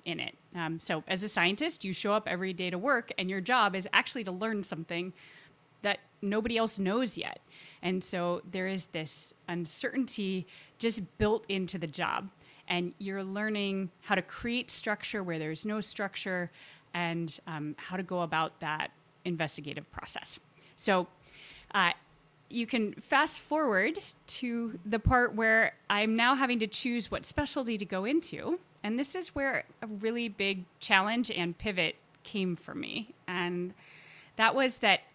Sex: female